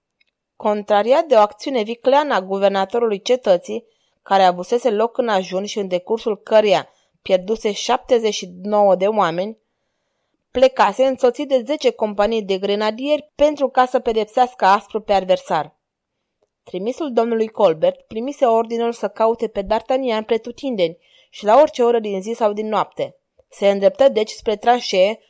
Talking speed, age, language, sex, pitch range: 140 wpm, 20-39, Romanian, female, 200-250 Hz